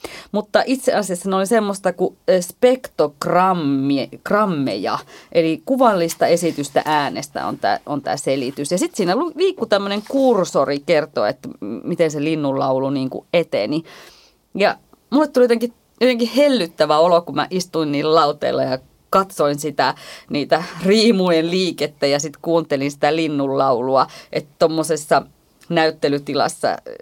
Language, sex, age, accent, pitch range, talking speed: Finnish, female, 30-49, native, 145-205 Hz, 120 wpm